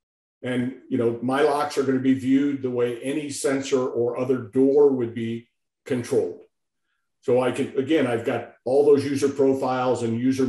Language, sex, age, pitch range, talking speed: English, male, 50-69, 120-140 Hz, 175 wpm